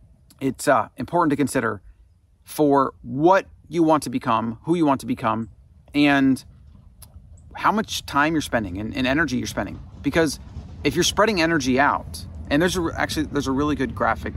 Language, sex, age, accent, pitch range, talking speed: English, male, 30-49, American, 100-150 Hz, 170 wpm